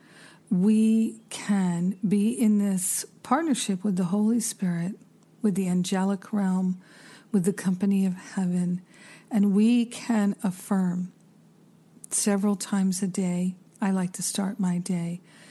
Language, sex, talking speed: English, female, 130 wpm